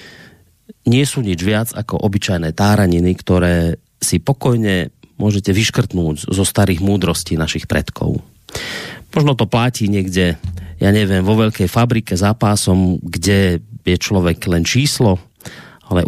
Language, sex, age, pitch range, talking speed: Slovak, male, 40-59, 90-115 Hz, 125 wpm